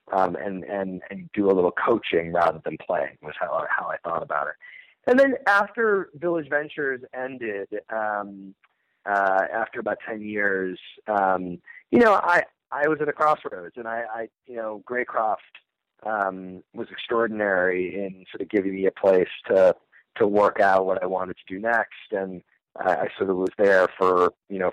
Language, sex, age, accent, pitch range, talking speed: English, male, 30-49, American, 95-130 Hz, 185 wpm